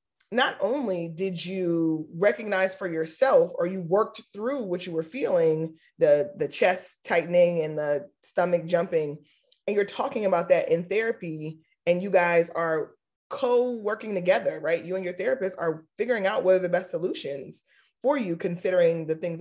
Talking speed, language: 165 wpm, English